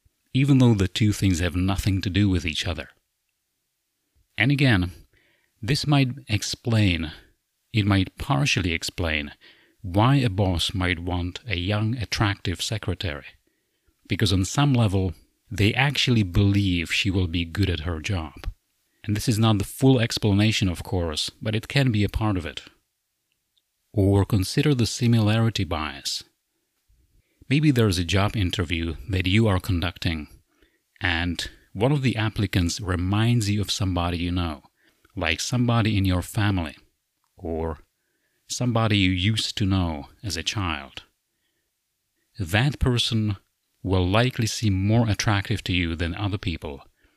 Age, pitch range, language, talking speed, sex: 30-49, 90-115 Hz, English, 140 wpm, male